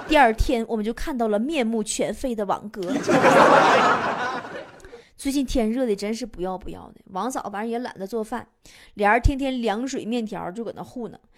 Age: 20-39